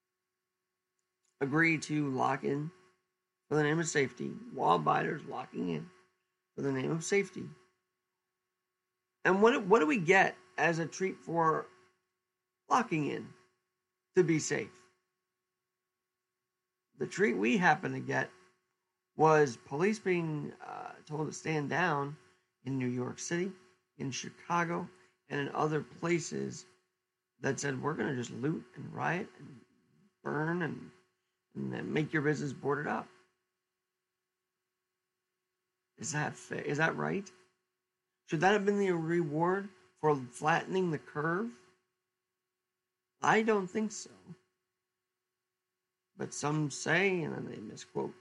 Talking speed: 125 wpm